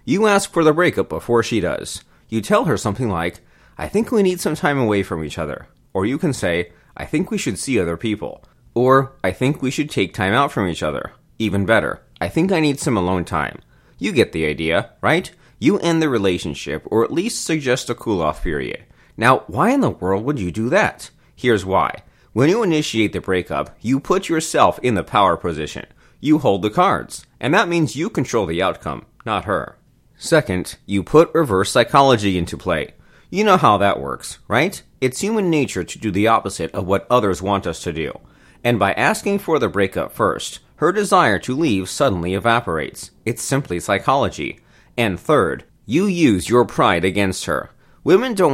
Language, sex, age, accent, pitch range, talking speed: English, male, 30-49, American, 90-135 Hz, 200 wpm